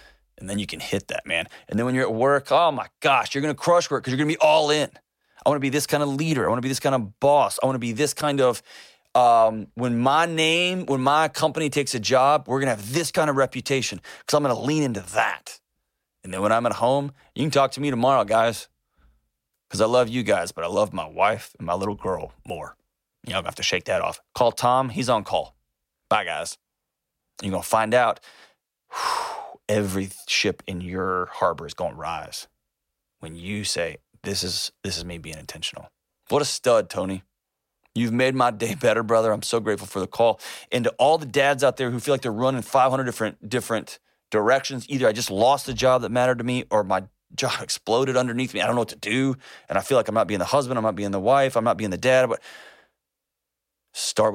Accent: American